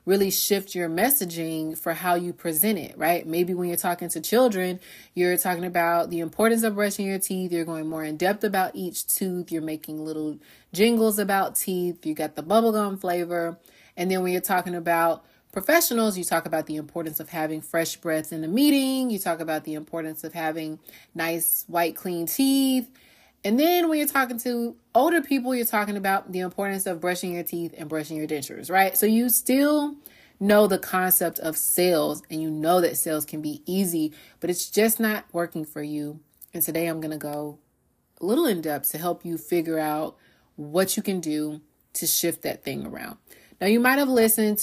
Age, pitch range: 20-39, 160-195 Hz